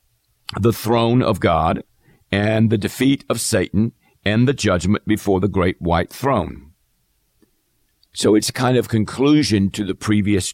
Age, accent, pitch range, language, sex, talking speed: 50-69, American, 85-115 Hz, English, male, 140 wpm